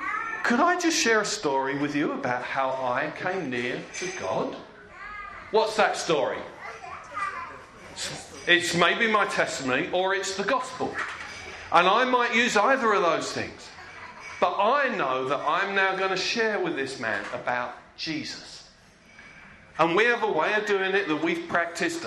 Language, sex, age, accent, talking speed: English, male, 40-59, British, 160 wpm